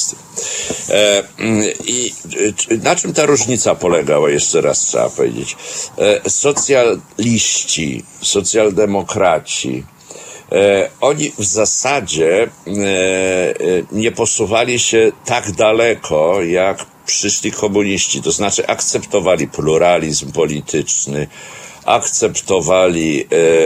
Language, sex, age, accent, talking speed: Polish, male, 60-79, native, 75 wpm